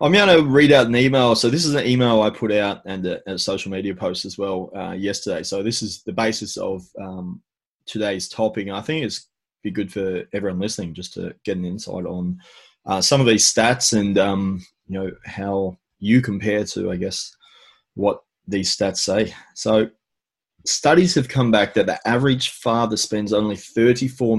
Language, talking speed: English, 195 wpm